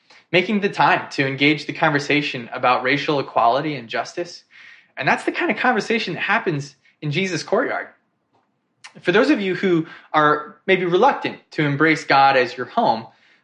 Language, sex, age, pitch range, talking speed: English, male, 20-39, 140-180 Hz, 165 wpm